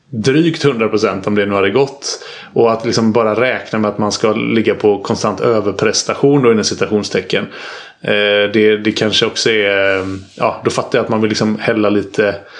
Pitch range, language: 105-125 Hz, Swedish